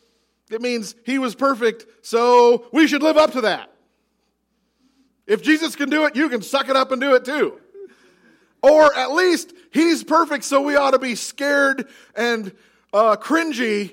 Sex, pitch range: male, 205-275 Hz